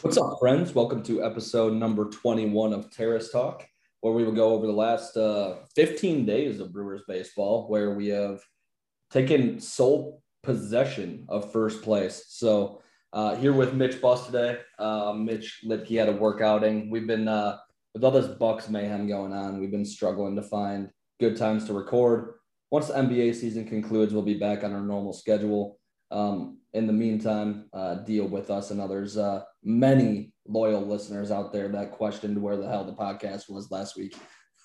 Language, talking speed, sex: English, 180 wpm, male